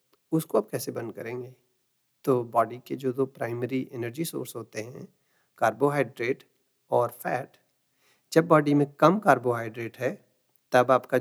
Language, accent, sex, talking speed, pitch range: Hindi, native, male, 145 wpm, 130-150 Hz